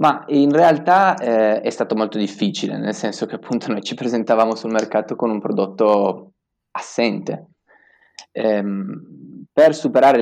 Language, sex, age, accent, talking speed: Italian, male, 20-39, native, 140 wpm